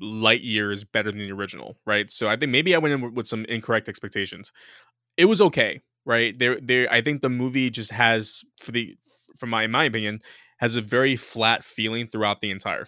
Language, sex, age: English, male, 20-39